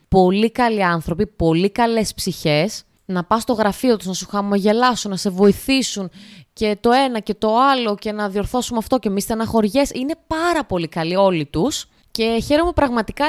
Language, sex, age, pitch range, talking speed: Greek, female, 20-39, 165-260 Hz, 180 wpm